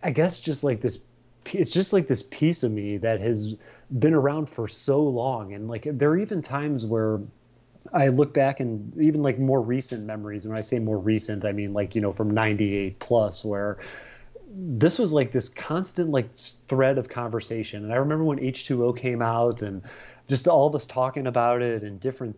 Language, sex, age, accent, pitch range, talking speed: English, male, 30-49, American, 110-135 Hz, 205 wpm